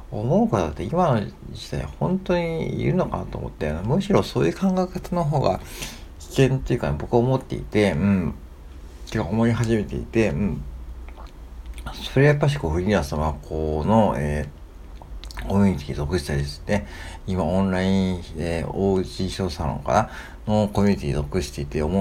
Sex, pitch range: male, 75-110 Hz